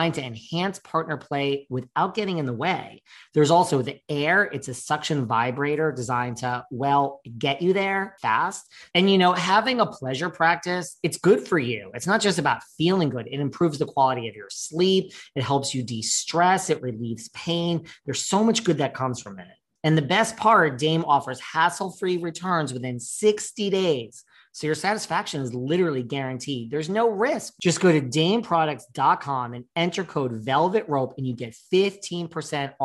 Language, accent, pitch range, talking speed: English, American, 130-180 Hz, 175 wpm